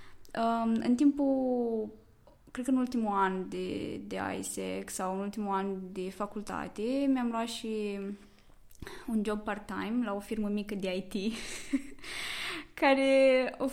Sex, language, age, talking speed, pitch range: female, Romanian, 20-39, 130 wpm, 195-245 Hz